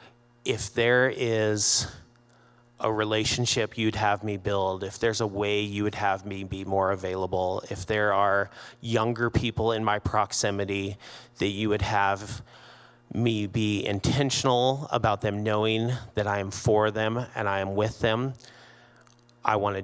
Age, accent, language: 30-49, American, English